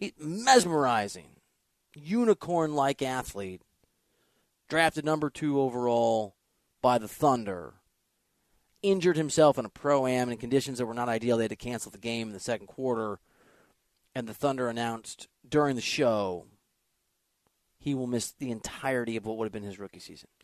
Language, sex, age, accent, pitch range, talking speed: English, male, 30-49, American, 120-175 Hz, 155 wpm